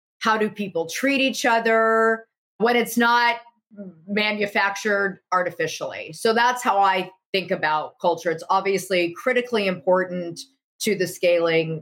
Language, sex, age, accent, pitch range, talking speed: English, female, 40-59, American, 185-230 Hz, 125 wpm